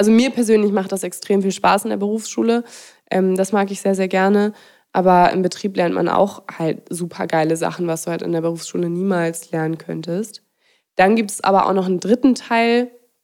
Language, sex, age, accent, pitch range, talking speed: German, female, 20-39, German, 185-230 Hz, 205 wpm